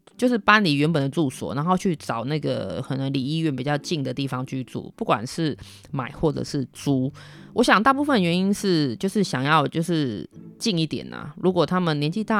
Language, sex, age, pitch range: Chinese, female, 20-39, 140-190 Hz